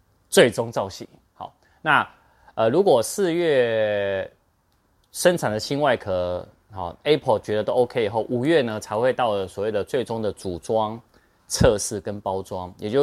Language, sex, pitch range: Chinese, male, 90-115 Hz